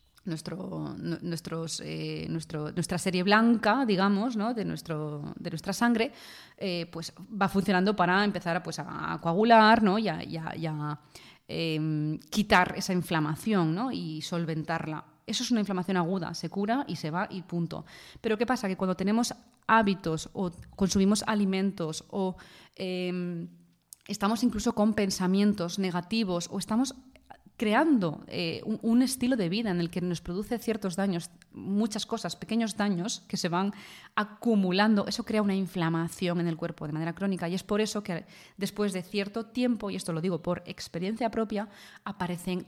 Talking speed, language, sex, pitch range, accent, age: 165 wpm, Spanish, female, 170-210 Hz, Spanish, 20-39